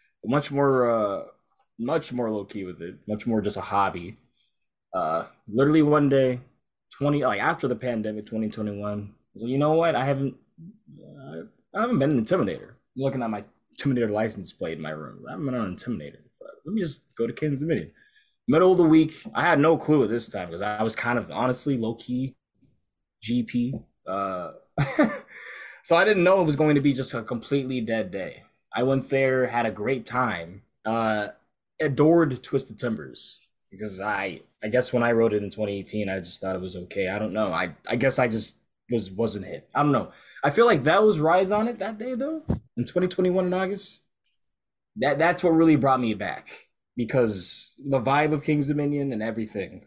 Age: 20-39